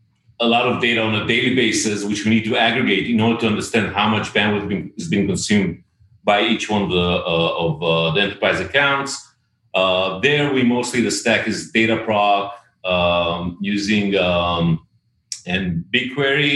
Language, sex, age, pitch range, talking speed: English, male, 30-49, 100-115 Hz, 175 wpm